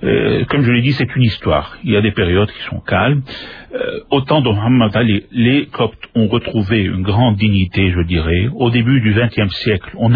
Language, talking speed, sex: French, 205 wpm, male